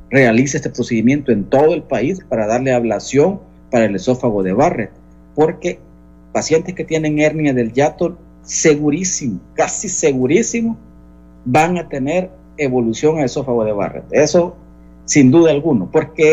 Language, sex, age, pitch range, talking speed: Spanish, male, 50-69, 110-160 Hz, 140 wpm